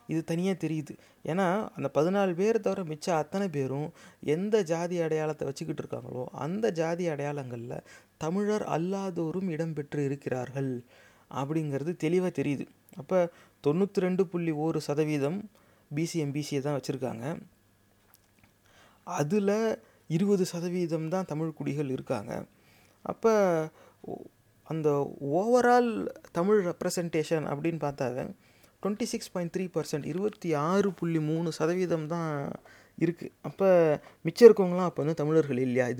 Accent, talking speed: native, 105 wpm